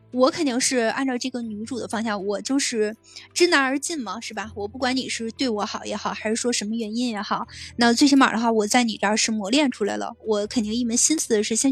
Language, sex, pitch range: Chinese, female, 215-270 Hz